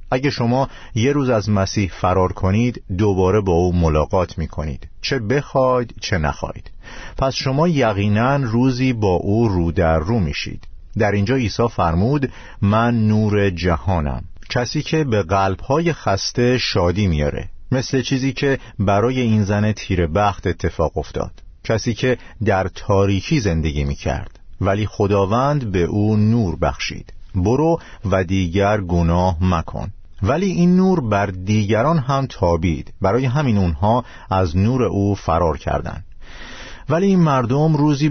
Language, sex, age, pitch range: Persian, male, 50-69, 90-120 Hz